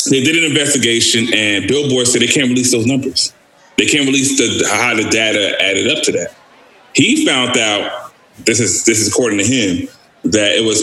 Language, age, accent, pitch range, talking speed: English, 30-49, American, 115-160 Hz, 200 wpm